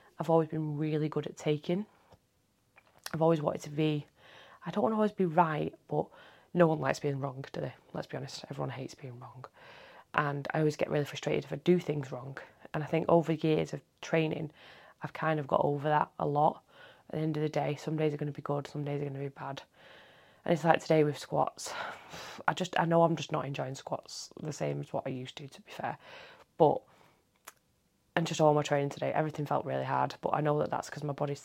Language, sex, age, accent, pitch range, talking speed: English, female, 20-39, British, 145-170 Hz, 235 wpm